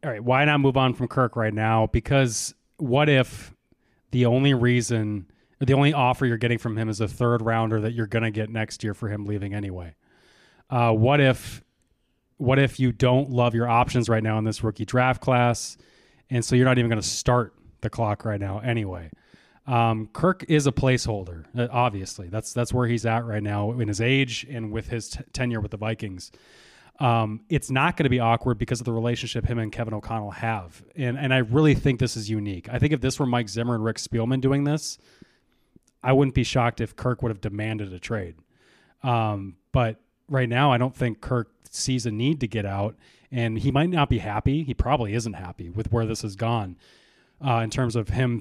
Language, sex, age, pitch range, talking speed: English, male, 20-39, 110-130 Hz, 215 wpm